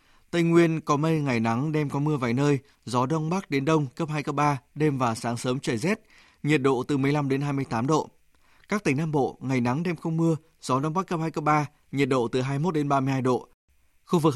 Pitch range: 130-160 Hz